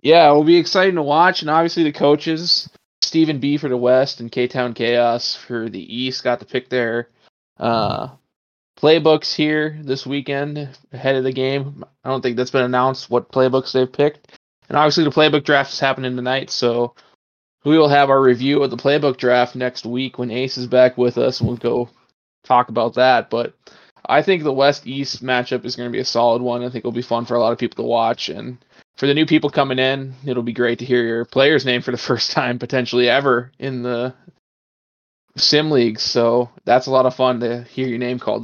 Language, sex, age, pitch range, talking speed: English, male, 20-39, 125-150 Hz, 215 wpm